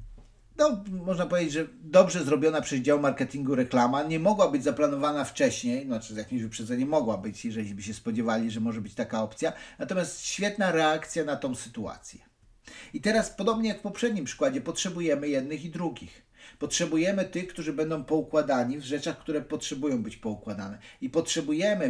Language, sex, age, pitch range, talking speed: Polish, male, 50-69, 125-185 Hz, 160 wpm